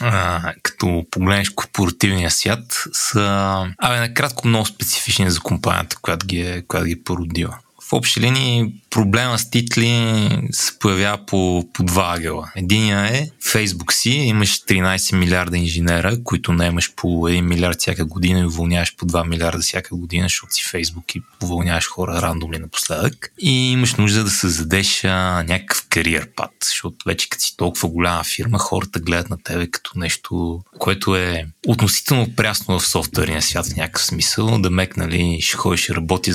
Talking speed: 155 wpm